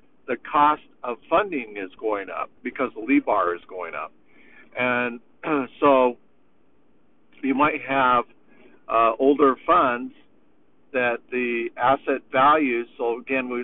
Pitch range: 115-145 Hz